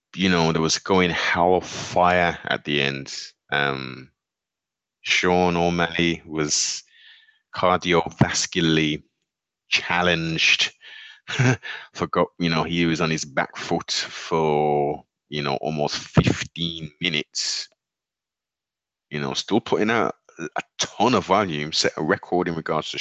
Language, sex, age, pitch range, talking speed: English, male, 30-49, 75-90 Hz, 125 wpm